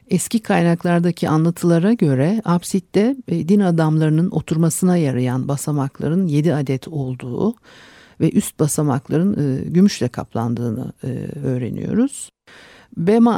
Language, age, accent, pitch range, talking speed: Turkish, 50-69, native, 145-205 Hz, 90 wpm